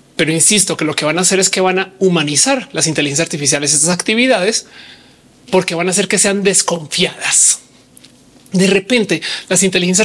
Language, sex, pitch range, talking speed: Spanish, male, 175-220 Hz, 175 wpm